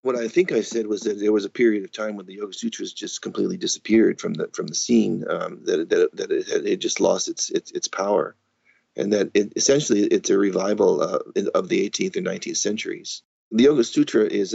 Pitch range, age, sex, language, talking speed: 330-420 Hz, 40-59, male, English, 230 wpm